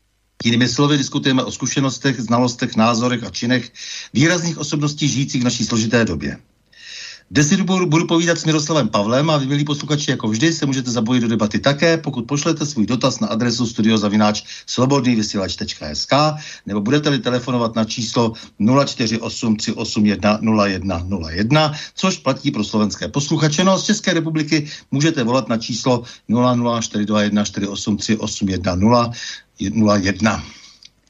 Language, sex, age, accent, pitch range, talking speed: Czech, male, 60-79, native, 110-145 Hz, 125 wpm